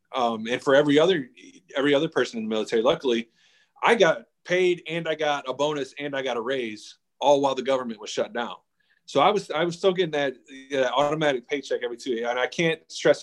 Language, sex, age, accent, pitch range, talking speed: English, male, 30-49, American, 125-160 Hz, 220 wpm